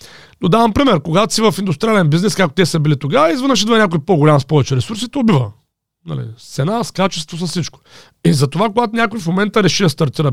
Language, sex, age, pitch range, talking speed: Bulgarian, male, 40-59, 145-200 Hz, 205 wpm